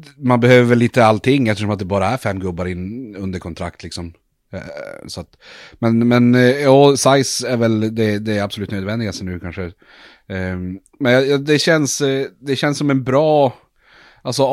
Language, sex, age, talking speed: Swedish, male, 30-49, 165 wpm